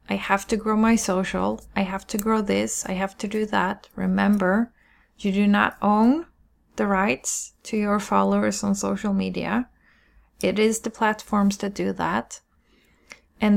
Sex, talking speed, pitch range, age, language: female, 165 wpm, 180-210 Hz, 20-39, English